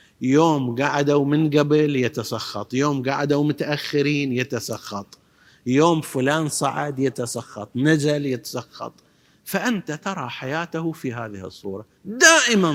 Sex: male